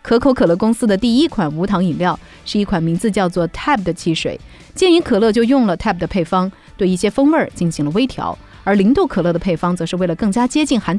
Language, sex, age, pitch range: Chinese, female, 30-49, 170-260 Hz